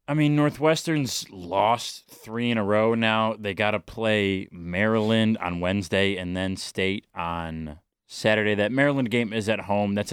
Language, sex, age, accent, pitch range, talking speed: English, male, 30-49, American, 95-120 Hz, 165 wpm